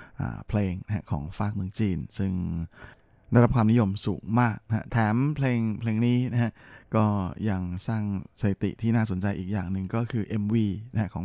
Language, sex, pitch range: Thai, male, 100-115 Hz